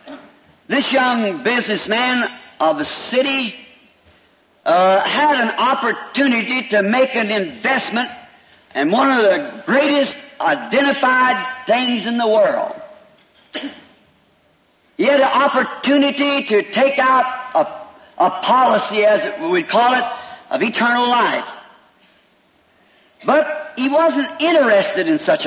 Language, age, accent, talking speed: English, 50-69, American, 115 wpm